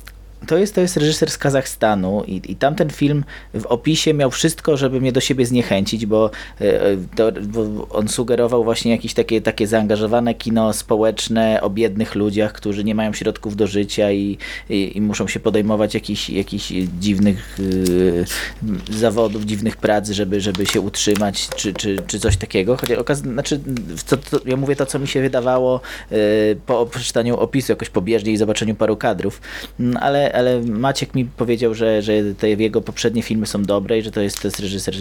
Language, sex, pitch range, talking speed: Polish, male, 105-130 Hz, 180 wpm